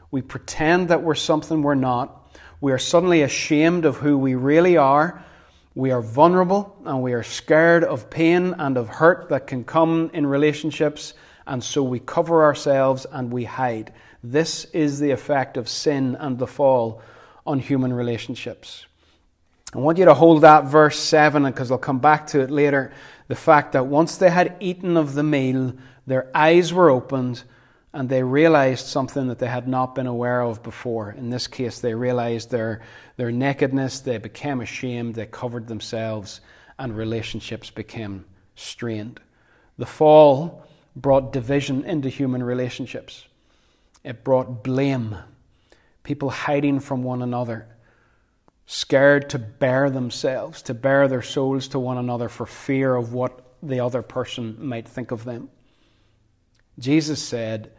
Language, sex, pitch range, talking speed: English, male, 120-145 Hz, 155 wpm